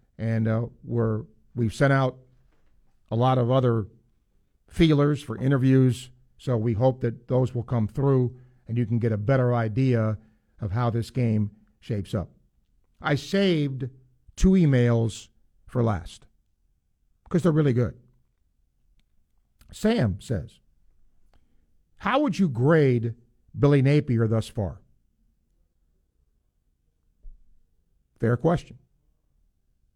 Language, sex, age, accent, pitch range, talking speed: English, male, 50-69, American, 85-130 Hz, 110 wpm